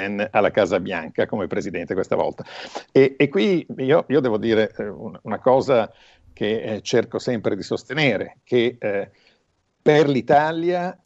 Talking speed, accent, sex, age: 150 wpm, native, male, 50-69